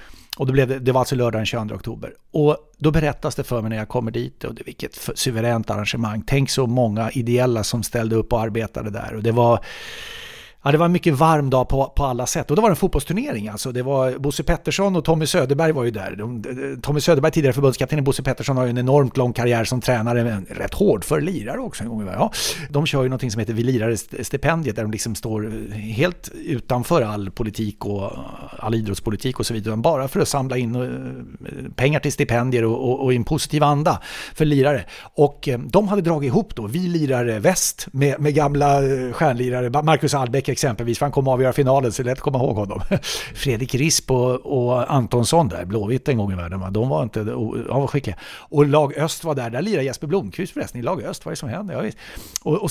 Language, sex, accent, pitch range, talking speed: English, male, Swedish, 115-145 Hz, 225 wpm